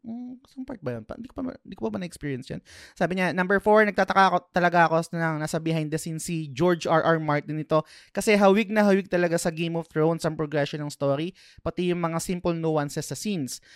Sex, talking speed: male, 220 wpm